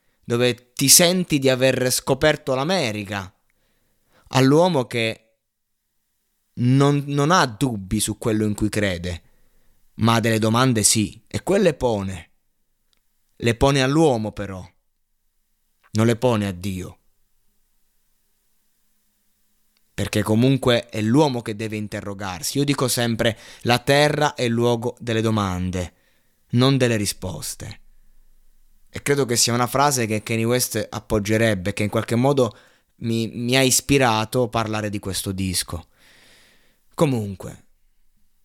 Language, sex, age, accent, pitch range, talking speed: Italian, male, 20-39, native, 100-120 Hz, 125 wpm